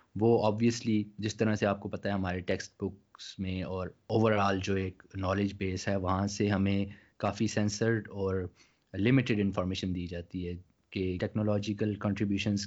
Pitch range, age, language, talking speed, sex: 95-110 Hz, 20-39, Urdu, 160 wpm, male